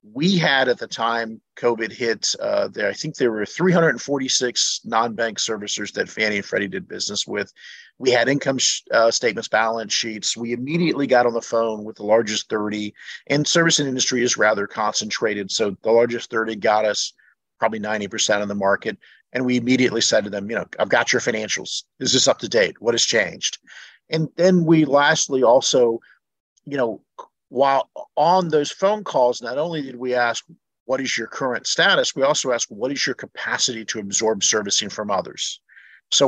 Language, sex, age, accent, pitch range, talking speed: English, male, 50-69, American, 110-145 Hz, 185 wpm